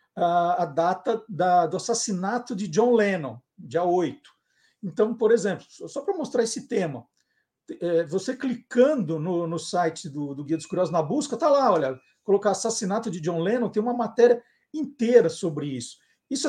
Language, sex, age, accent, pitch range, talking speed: Portuguese, male, 50-69, Brazilian, 175-235 Hz, 175 wpm